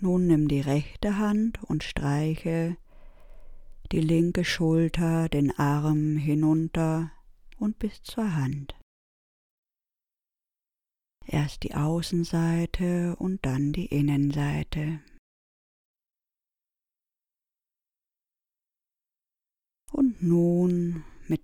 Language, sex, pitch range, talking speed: German, female, 145-175 Hz, 75 wpm